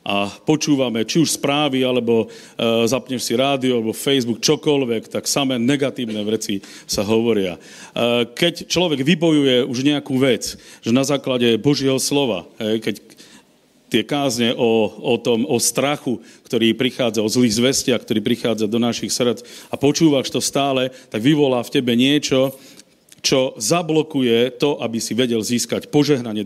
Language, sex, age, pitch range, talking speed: Slovak, male, 50-69, 120-150 Hz, 145 wpm